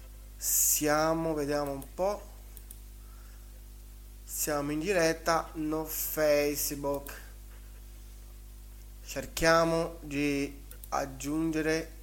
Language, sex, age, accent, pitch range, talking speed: Italian, male, 30-49, native, 120-165 Hz, 60 wpm